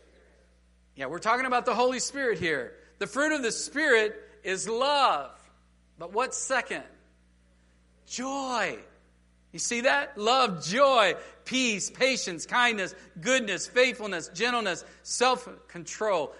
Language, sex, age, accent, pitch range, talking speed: English, male, 50-69, American, 150-245 Hz, 115 wpm